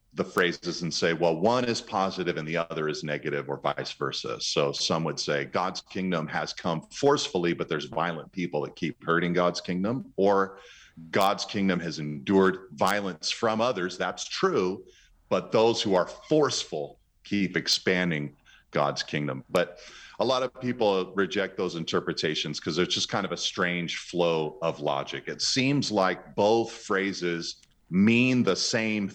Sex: male